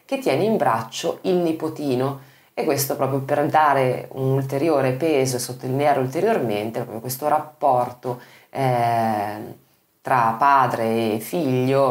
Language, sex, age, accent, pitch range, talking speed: Italian, female, 30-49, native, 125-145 Hz, 125 wpm